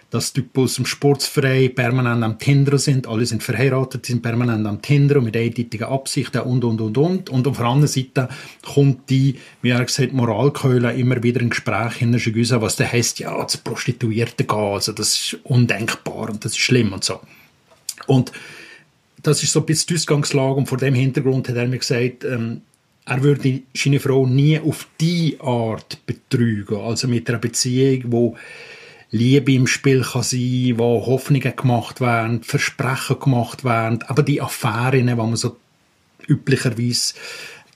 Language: German